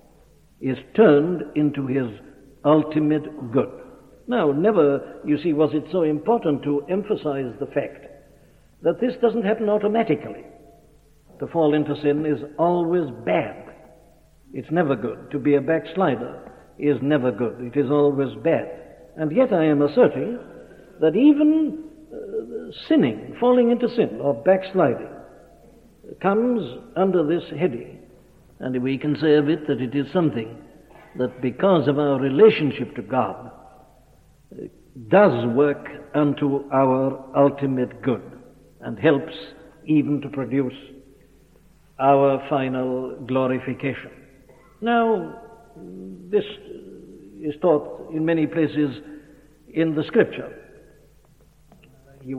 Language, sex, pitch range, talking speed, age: English, male, 135-170 Hz, 120 wpm, 60-79